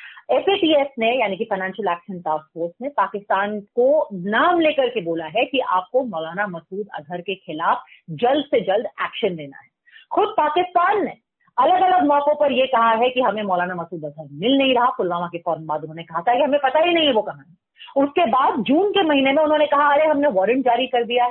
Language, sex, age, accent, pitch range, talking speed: Hindi, female, 30-49, native, 195-285 Hz, 215 wpm